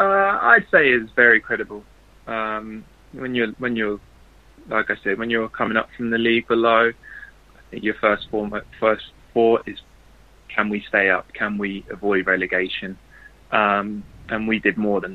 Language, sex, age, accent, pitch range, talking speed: English, male, 20-39, British, 95-105 Hz, 175 wpm